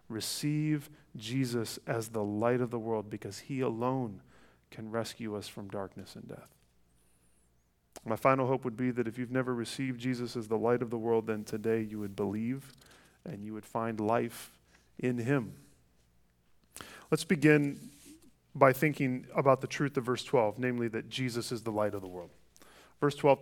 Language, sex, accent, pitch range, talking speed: English, male, American, 115-150 Hz, 175 wpm